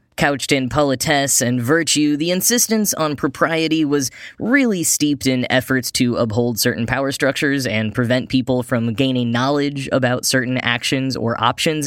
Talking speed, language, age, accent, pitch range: 150 wpm, English, 10-29, American, 125-165 Hz